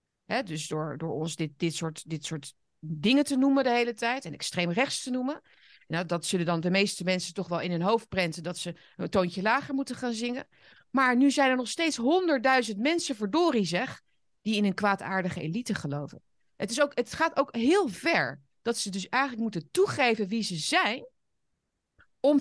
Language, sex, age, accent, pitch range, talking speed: Dutch, female, 30-49, Dutch, 165-260 Hz, 190 wpm